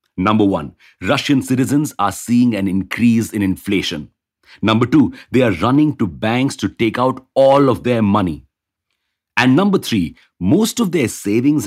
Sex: male